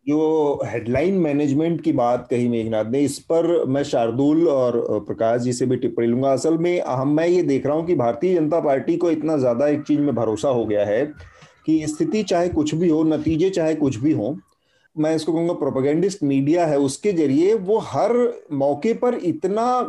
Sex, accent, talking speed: male, native, 195 wpm